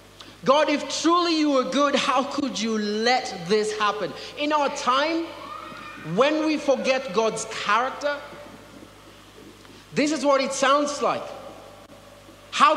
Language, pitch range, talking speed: English, 220-285 Hz, 125 wpm